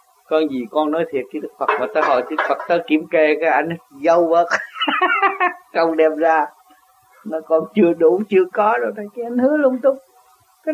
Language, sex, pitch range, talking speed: Vietnamese, male, 160-245 Hz, 200 wpm